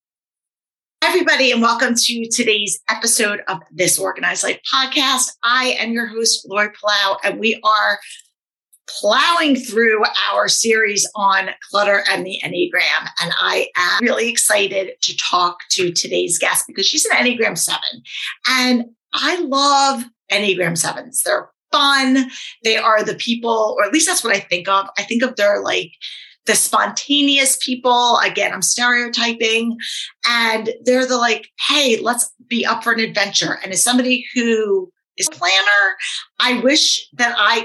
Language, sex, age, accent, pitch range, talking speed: English, female, 40-59, American, 200-255 Hz, 155 wpm